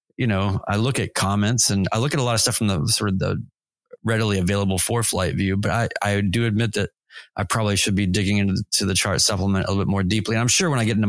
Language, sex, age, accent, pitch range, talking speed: English, male, 30-49, American, 100-120 Hz, 285 wpm